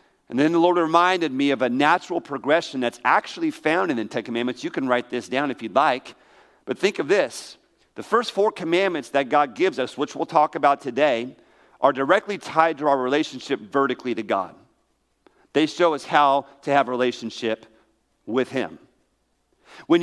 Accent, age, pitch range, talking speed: American, 50-69, 125-185 Hz, 185 wpm